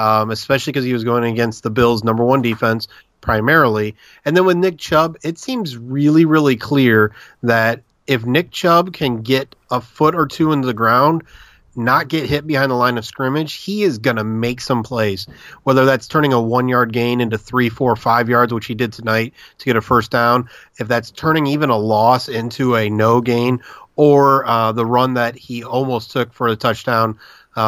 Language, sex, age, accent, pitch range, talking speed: English, male, 30-49, American, 115-140 Hz, 200 wpm